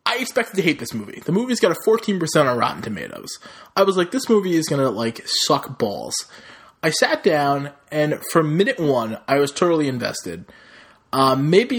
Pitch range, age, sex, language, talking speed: 130-165 Hz, 20-39, male, English, 195 wpm